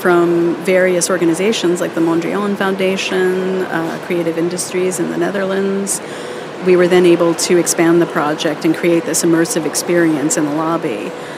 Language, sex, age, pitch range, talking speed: English, female, 40-59, 165-180 Hz, 155 wpm